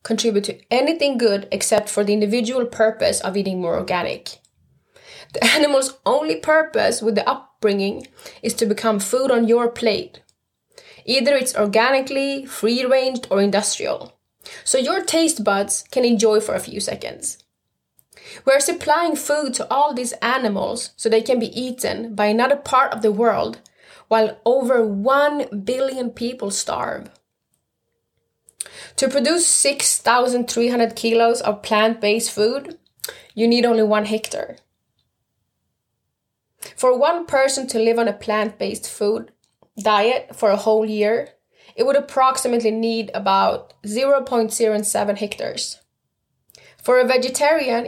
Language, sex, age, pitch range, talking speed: English, female, 20-39, 215-270 Hz, 130 wpm